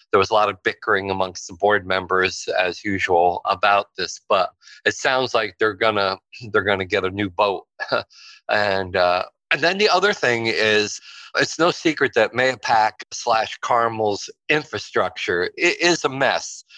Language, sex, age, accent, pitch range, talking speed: English, male, 50-69, American, 105-120 Hz, 160 wpm